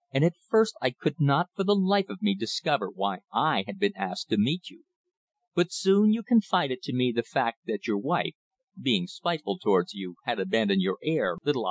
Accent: American